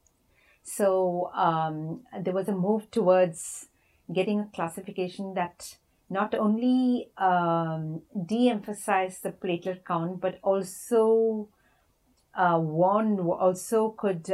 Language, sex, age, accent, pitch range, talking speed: English, female, 50-69, Indian, 165-210 Hz, 105 wpm